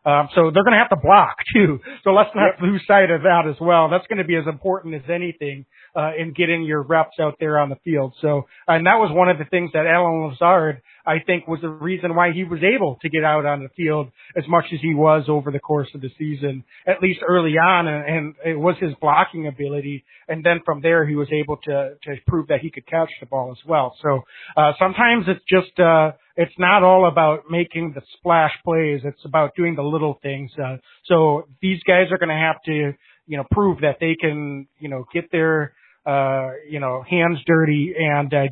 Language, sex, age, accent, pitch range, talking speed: English, male, 40-59, American, 145-170 Hz, 230 wpm